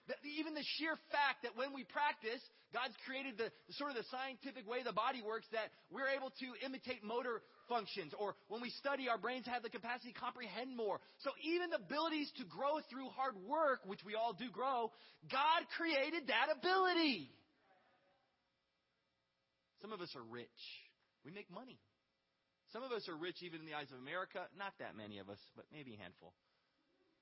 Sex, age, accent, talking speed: male, 30-49, American, 185 wpm